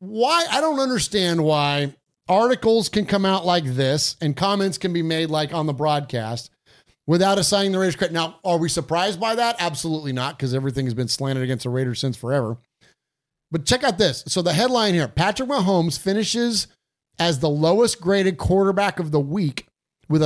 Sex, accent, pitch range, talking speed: male, American, 155-205 Hz, 185 wpm